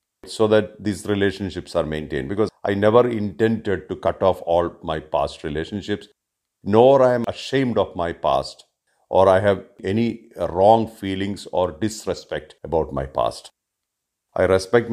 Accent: Indian